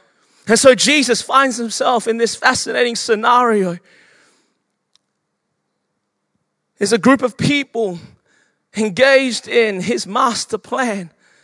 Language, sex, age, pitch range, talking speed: English, male, 30-49, 200-255 Hz, 100 wpm